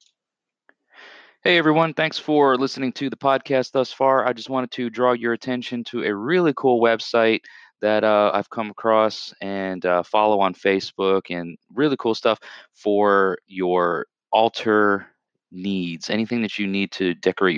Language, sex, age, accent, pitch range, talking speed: English, male, 30-49, American, 90-115 Hz, 155 wpm